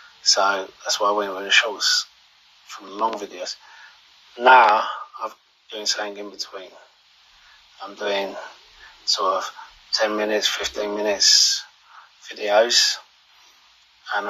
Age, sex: 30-49, male